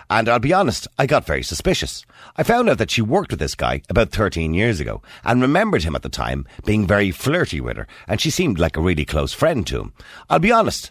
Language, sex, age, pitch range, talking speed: English, male, 50-69, 80-115 Hz, 250 wpm